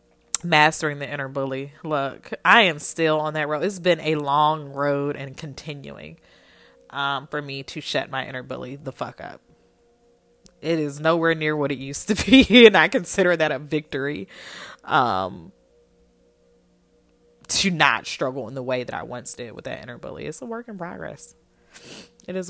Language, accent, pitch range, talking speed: English, American, 130-155 Hz, 175 wpm